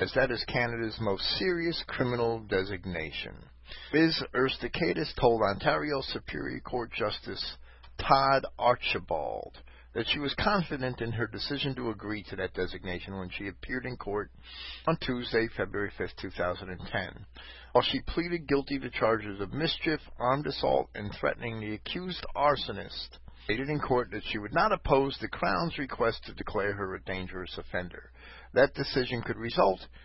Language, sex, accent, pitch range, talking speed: English, male, American, 95-130 Hz, 150 wpm